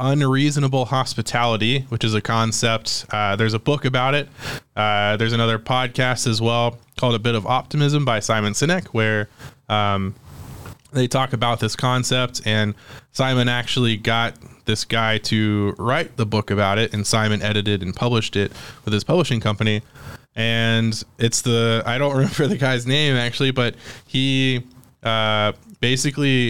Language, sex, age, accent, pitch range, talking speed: English, male, 20-39, American, 110-125 Hz, 155 wpm